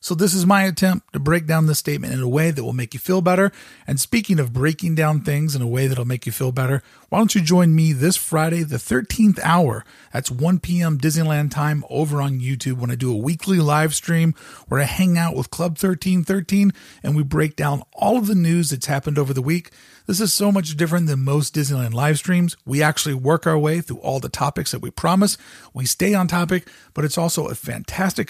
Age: 40-59